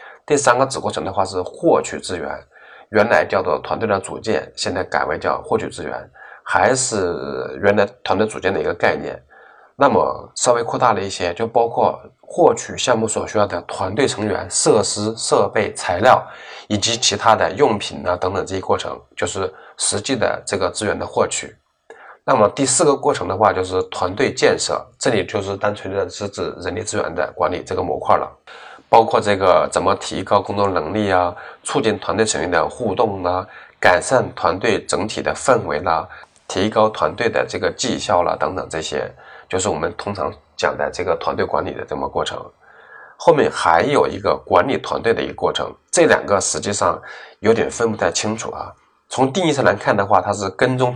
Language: Chinese